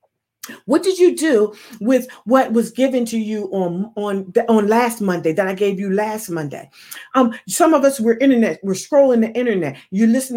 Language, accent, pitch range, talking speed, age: English, American, 180-235 Hz, 185 wpm, 40-59